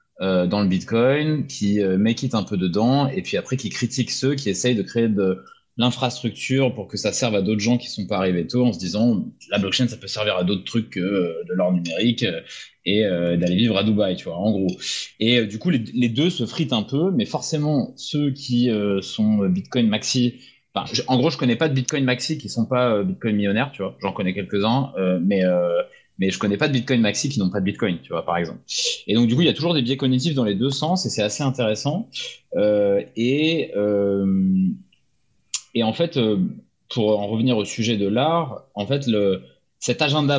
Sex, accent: male, French